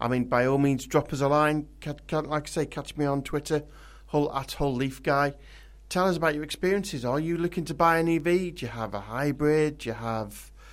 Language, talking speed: English, 240 wpm